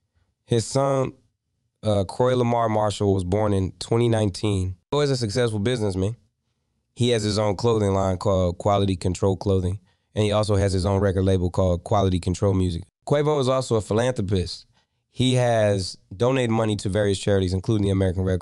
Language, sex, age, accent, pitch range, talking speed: English, male, 20-39, American, 95-115 Hz, 175 wpm